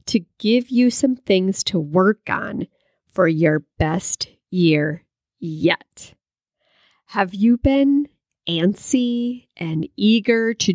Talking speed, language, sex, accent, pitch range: 110 wpm, English, female, American, 170-235 Hz